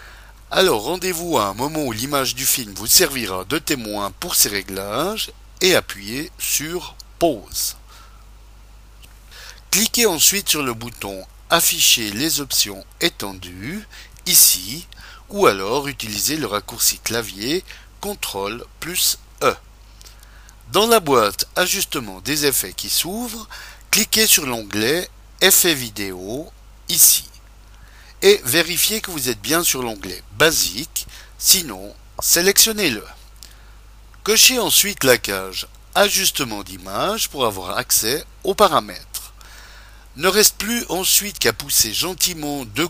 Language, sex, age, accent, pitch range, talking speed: French, male, 50-69, French, 100-170 Hz, 115 wpm